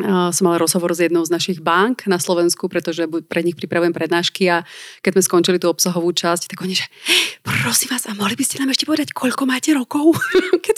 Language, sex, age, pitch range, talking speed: Slovak, female, 30-49, 165-195 Hz, 210 wpm